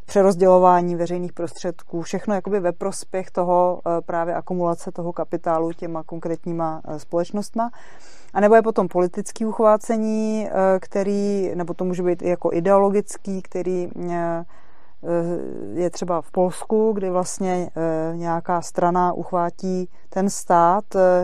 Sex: female